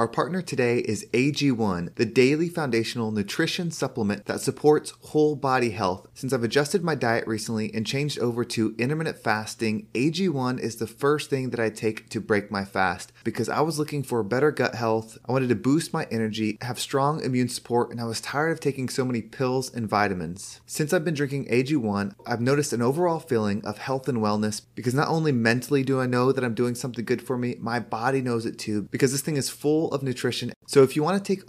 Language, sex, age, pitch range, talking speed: English, male, 30-49, 115-140 Hz, 215 wpm